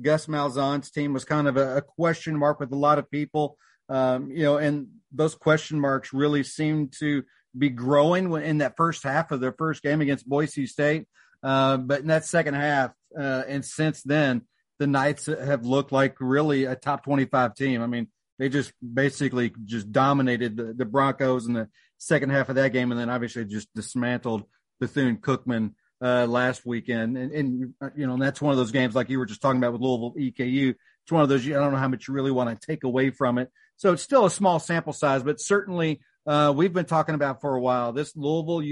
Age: 40-59